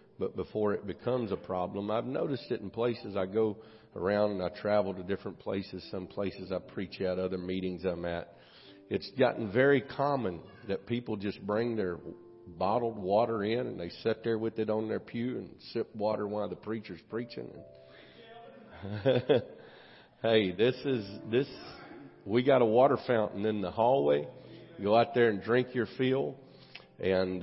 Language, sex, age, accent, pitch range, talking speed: English, male, 50-69, American, 95-115 Hz, 170 wpm